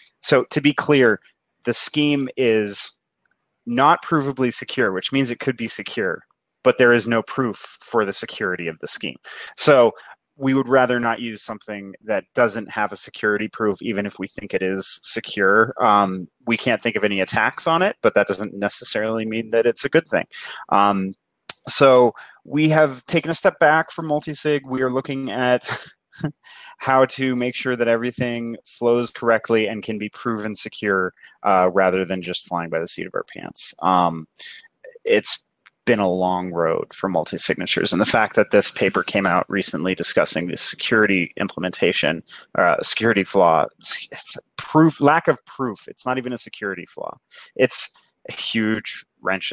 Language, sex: English, male